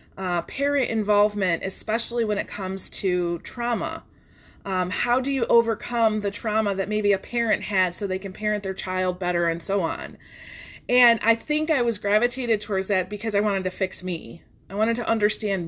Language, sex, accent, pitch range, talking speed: English, female, American, 195-235 Hz, 190 wpm